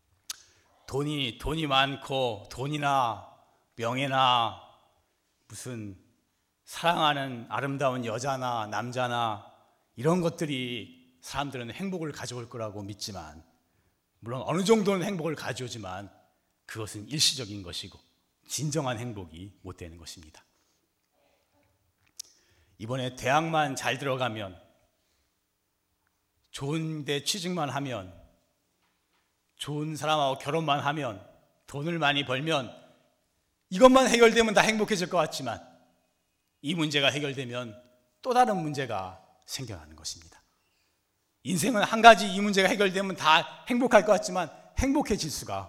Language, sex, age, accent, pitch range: Korean, male, 40-59, native, 100-155 Hz